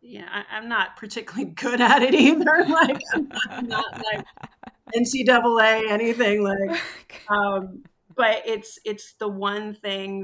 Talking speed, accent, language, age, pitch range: 145 wpm, American, English, 30-49, 170-190 Hz